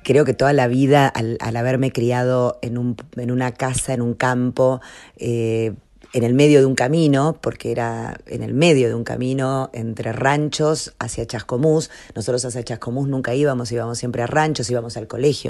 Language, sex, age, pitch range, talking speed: Spanish, female, 40-59, 120-150 Hz, 185 wpm